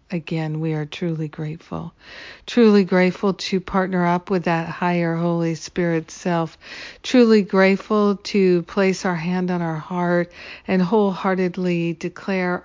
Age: 60-79